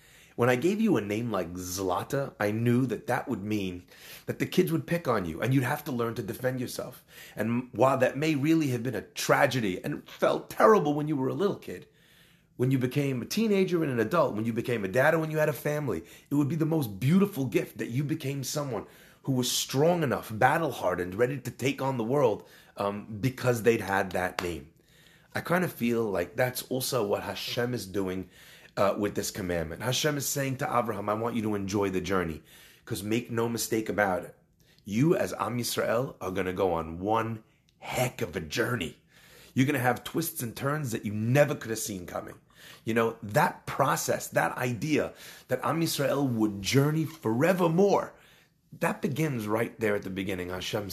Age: 30-49